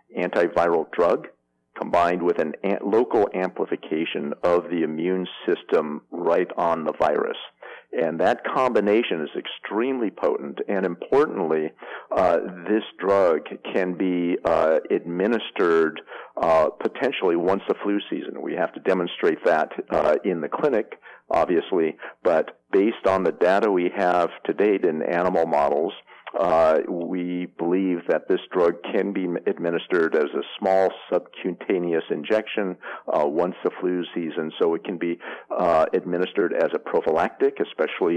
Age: 50-69